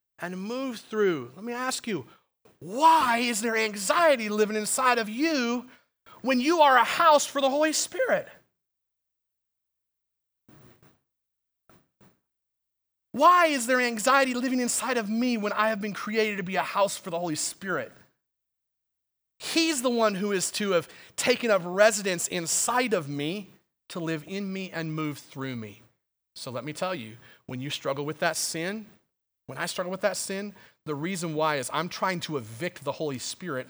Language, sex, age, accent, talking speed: English, male, 30-49, American, 165 wpm